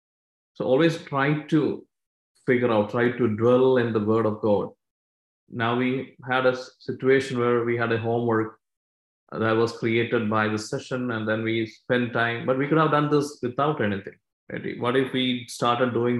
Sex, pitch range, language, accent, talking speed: male, 115-130 Hz, English, Indian, 180 wpm